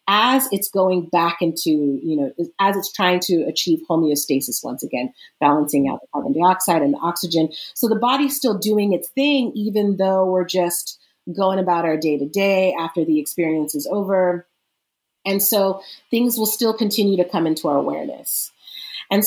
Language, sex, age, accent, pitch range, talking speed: English, female, 30-49, American, 160-195 Hz, 175 wpm